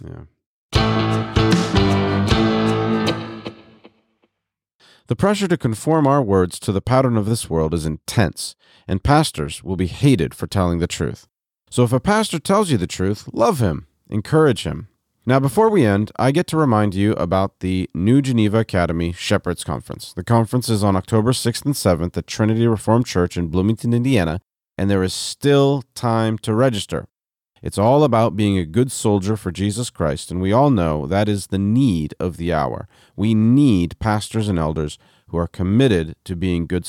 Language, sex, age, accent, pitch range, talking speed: English, male, 40-59, American, 95-130 Hz, 170 wpm